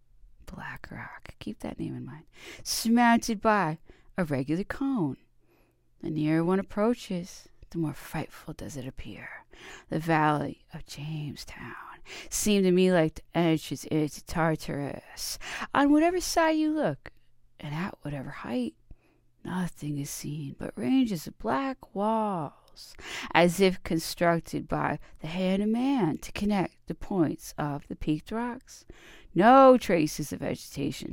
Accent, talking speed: American, 135 wpm